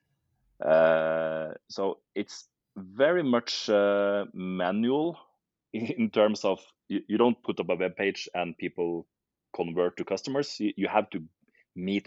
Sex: male